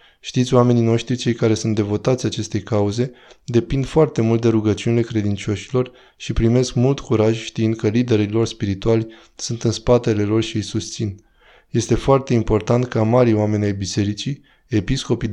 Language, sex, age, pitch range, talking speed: Romanian, male, 20-39, 105-125 Hz, 155 wpm